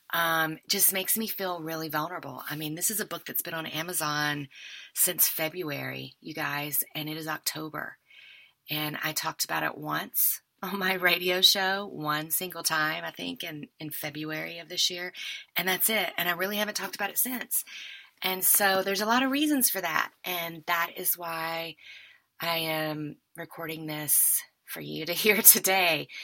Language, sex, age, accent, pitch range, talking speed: English, female, 30-49, American, 150-180 Hz, 180 wpm